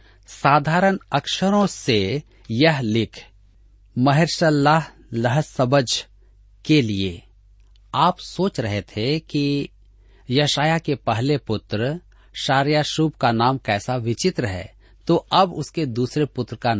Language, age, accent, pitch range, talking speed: Hindi, 40-59, native, 105-155 Hz, 110 wpm